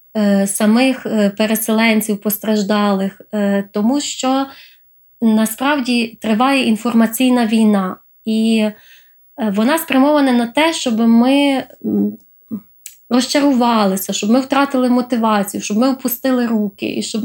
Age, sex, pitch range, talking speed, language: 20-39, female, 215-255 Hz, 95 wpm, Ukrainian